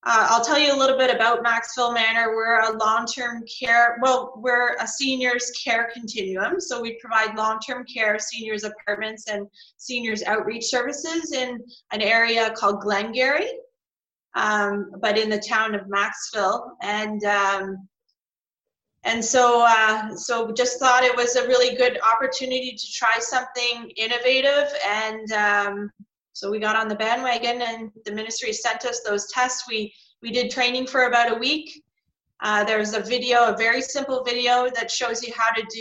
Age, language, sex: 20-39, English, female